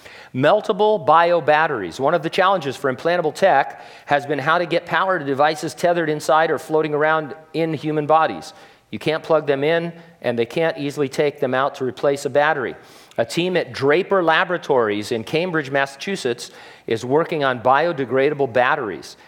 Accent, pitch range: American, 125-165 Hz